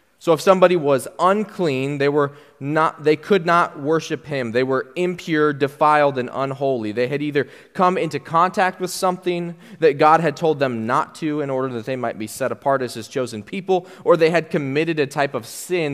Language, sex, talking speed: English, male, 205 wpm